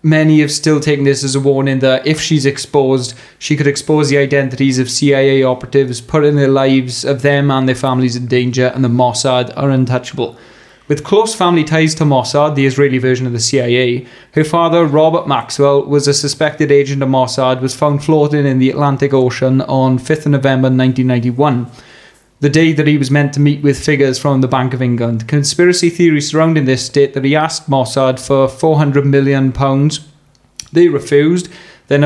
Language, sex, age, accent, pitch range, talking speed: English, male, 20-39, British, 130-150 Hz, 185 wpm